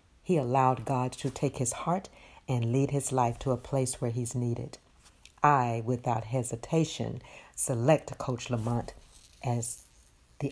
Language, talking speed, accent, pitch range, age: English, 145 wpm, American, 110-130 Hz, 60-79